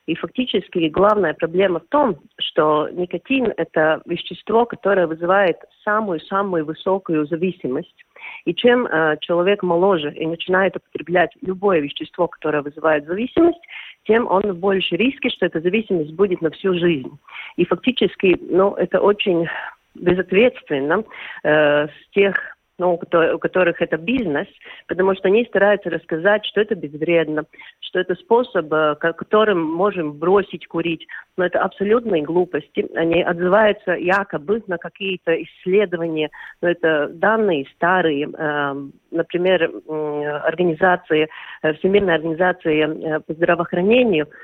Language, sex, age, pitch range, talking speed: Russian, female, 40-59, 160-200 Hz, 120 wpm